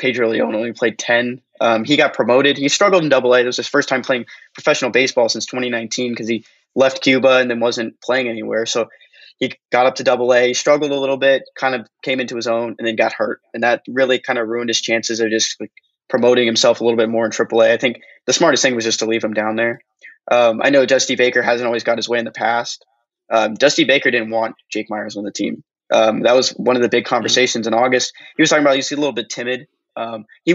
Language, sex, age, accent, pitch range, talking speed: English, male, 20-39, American, 115-130 Hz, 250 wpm